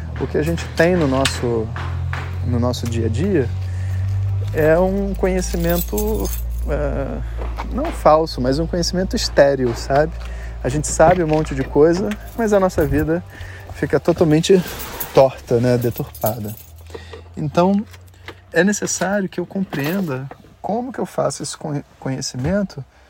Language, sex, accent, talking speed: Portuguese, male, Brazilian, 130 wpm